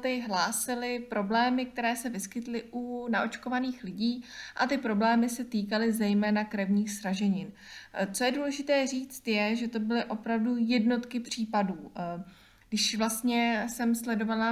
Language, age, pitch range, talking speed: Czech, 20-39, 210-235 Hz, 130 wpm